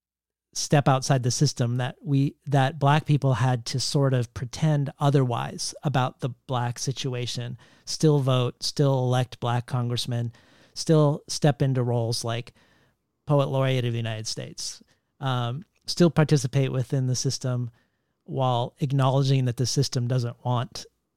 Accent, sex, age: American, male, 40-59